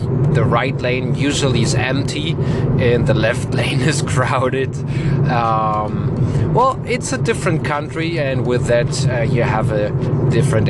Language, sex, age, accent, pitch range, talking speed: English, male, 30-49, German, 130-145 Hz, 145 wpm